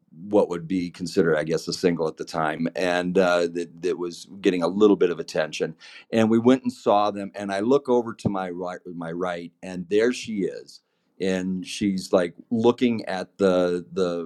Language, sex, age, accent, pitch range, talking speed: English, male, 50-69, American, 90-130 Hz, 200 wpm